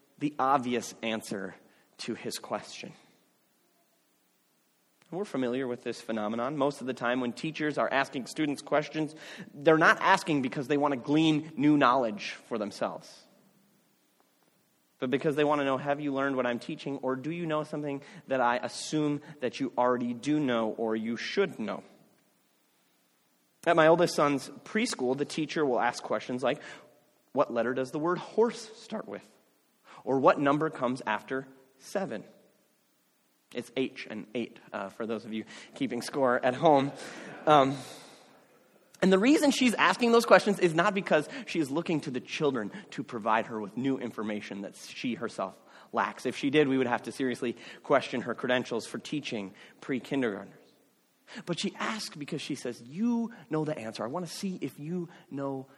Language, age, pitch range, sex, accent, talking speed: English, 30-49, 120-160 Hz, male, American, 170 wpm